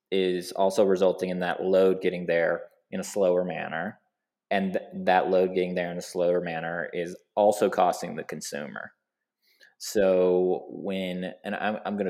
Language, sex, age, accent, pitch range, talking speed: English, male, 20-39, American, 90-95 Hz, 155 wpm